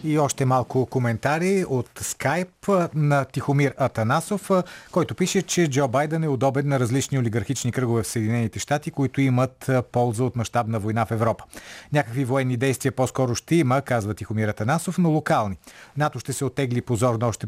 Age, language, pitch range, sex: 40-59, Bulgarian, 115-150 Hz, male